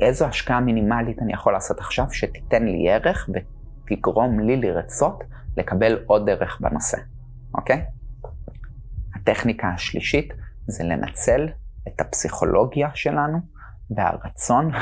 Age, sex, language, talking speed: 30-49, male, Hebrew, 105 wpm